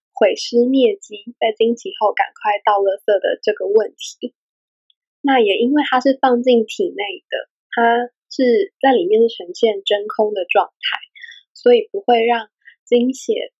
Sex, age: female, 10-29